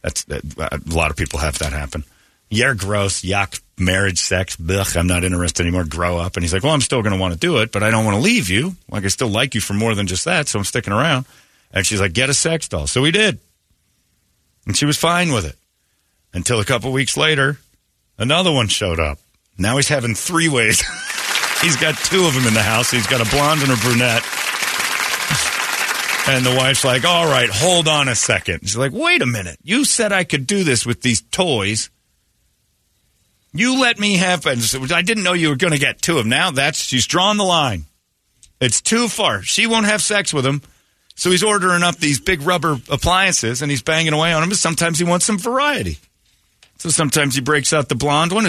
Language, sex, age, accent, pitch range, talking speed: English, male, 40-59, American, 100-165 Hz, 220 wpm